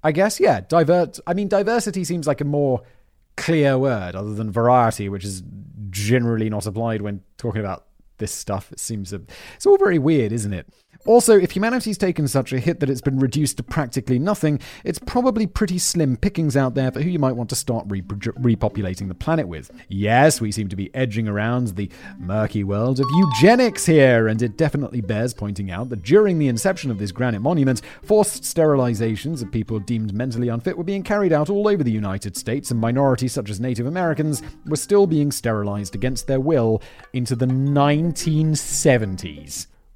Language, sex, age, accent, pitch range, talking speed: English, male, 30-49, British, 110-160 Hz, 190 wpm